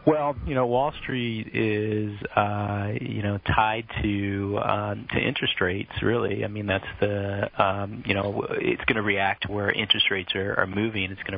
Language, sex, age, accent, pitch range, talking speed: English, male, 30-49, American, 95-110 Hz, 190 wpm